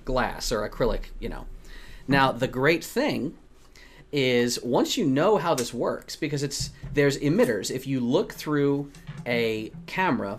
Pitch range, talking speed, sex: 115-145 Hz, 150 wpm, male